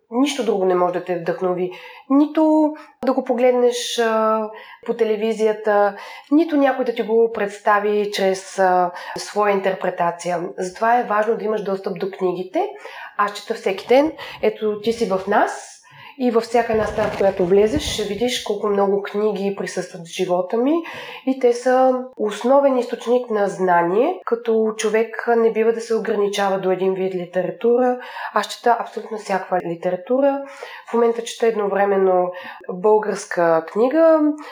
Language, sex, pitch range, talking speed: Bulgarian, female, 190-245 Hz, 150 wpm